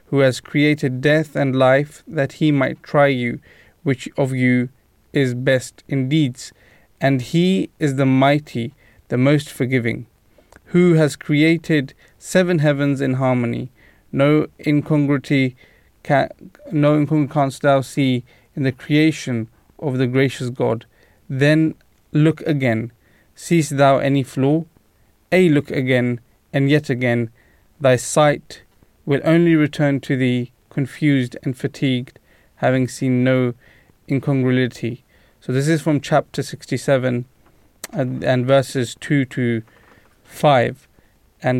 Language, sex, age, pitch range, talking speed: English, male, 30-49, 125-150 Hz, 125 wpm